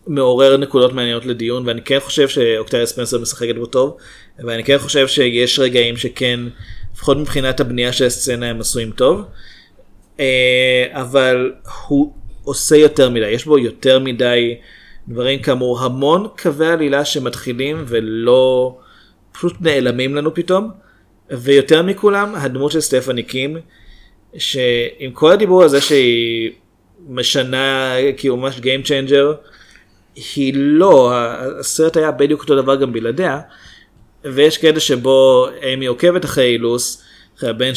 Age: 30-49